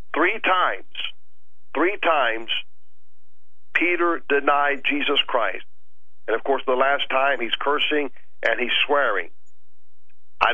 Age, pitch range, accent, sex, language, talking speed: 50-69, 125-145 Hz, American, male, English, 115 wpm